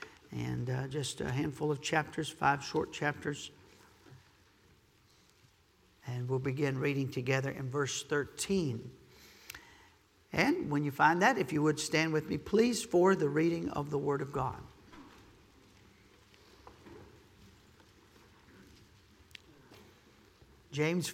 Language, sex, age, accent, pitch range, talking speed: English, male, 50-69, American, 135-175 Hz, 110 wpm